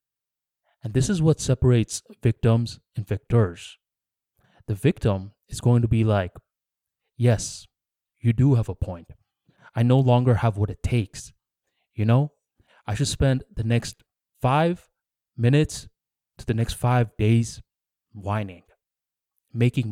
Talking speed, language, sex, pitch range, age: 135 wpm, English, male, 105-130 Hz, 20-39